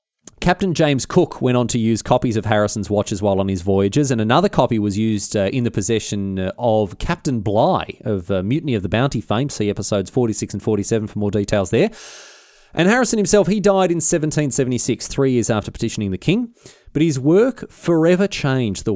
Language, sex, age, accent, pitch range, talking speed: English, male, 30-49, Australian, 105-155 Hz, 195 wpm